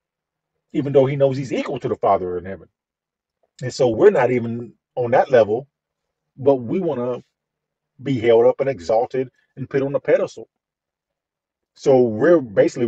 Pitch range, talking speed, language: 110-145 Hz, 170 wpm, English